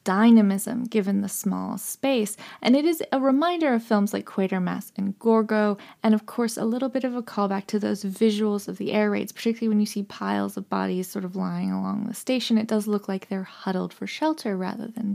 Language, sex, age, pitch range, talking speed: English, female, 20-39, 195-230 Hz, 220 wpm